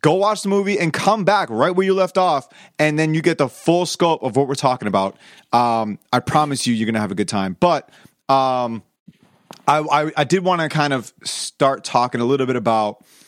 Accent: American